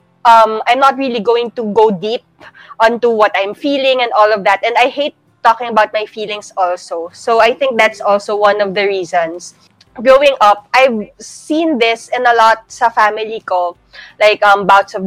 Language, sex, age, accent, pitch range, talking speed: Filipino, female, 20-39, native, 200-245 Hz, 190 wpm